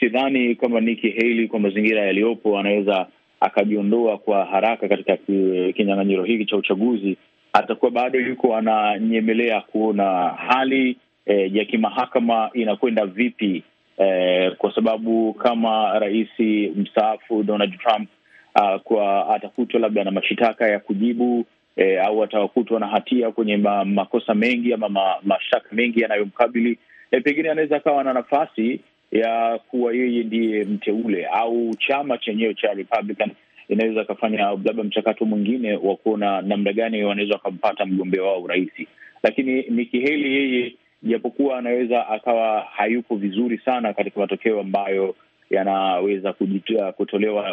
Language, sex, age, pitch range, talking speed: Swahili, male, 30-49, 100-120 Hz, 125 wpm